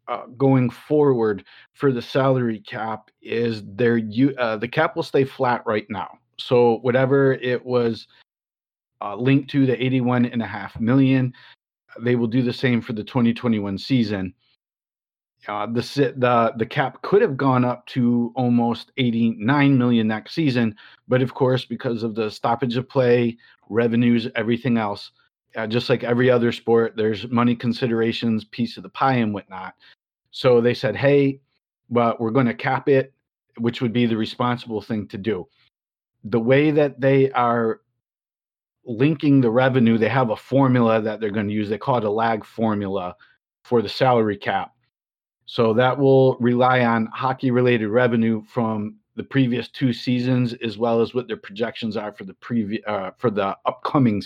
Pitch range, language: 115-130 Hz, English